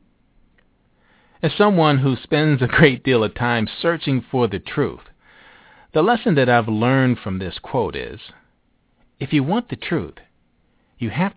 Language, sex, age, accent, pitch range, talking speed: English, male, 50-69, American, 105-155 Hz, 155 wpm